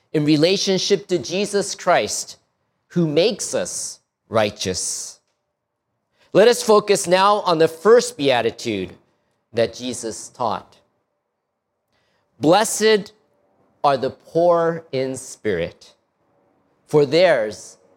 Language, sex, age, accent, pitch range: Japanese, male, 50-69, American, 150-220 Hz